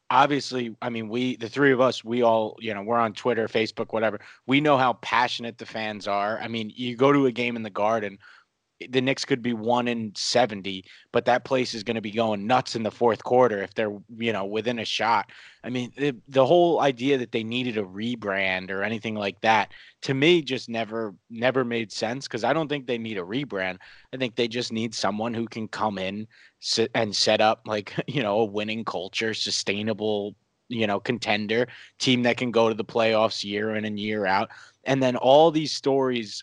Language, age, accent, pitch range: English, 30-49, American, 110-130 Hz